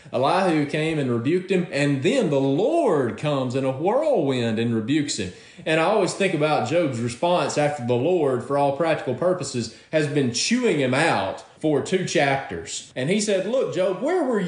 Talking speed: 185 wpm